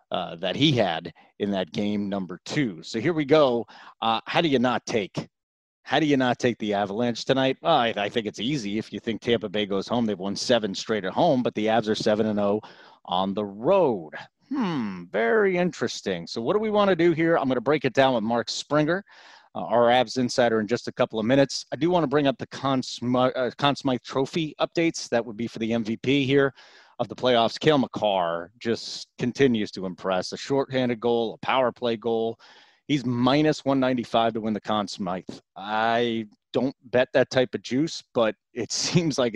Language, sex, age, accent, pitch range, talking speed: English, male, 30-49, American, 110-140 Hz, 215 wpm